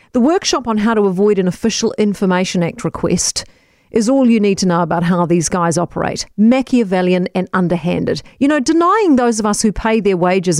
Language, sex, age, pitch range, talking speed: English, female, 40-59, 180-250 Hz, 200 wpm